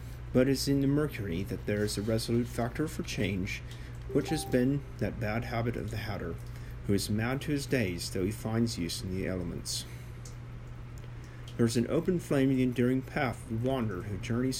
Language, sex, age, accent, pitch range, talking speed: English, male, 40-59, American, 100-125 Hz, 200 wpm